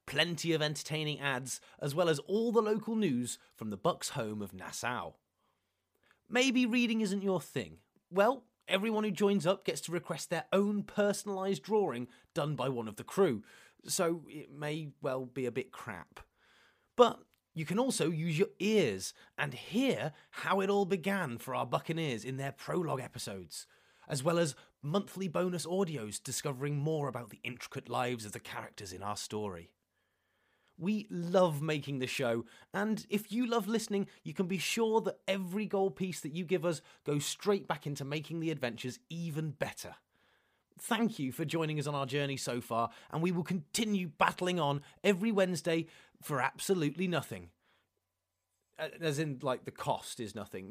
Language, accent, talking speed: English, British, 170 wpm